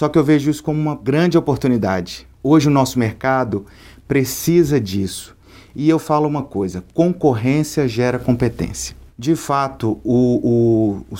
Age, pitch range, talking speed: 40-59, 100-135 Hz, 150 wpm